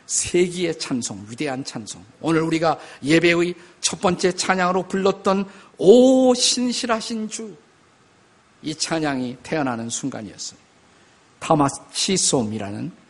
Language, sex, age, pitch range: Korean, male, 50-69, 130-185 Hz